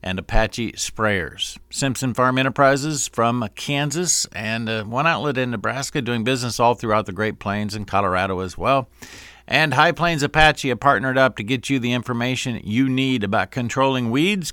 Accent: American